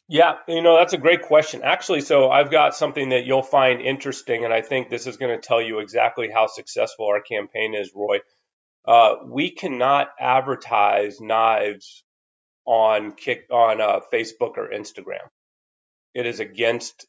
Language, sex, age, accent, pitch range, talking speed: English, male, 30-49, American, 110-150 Hz, 165 wpm